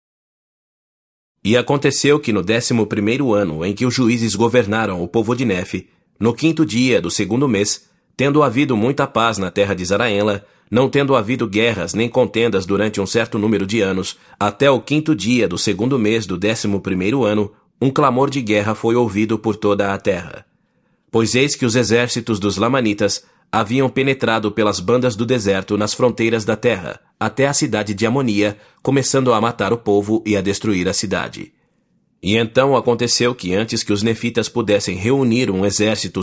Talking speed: 175 wpm